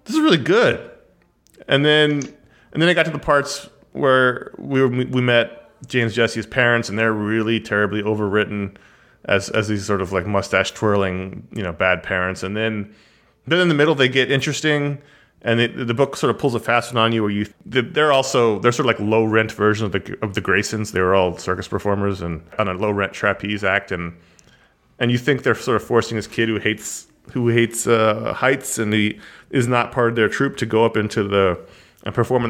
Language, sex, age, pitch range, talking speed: English, male, 30-49, 105-130 Hz, 220 wpm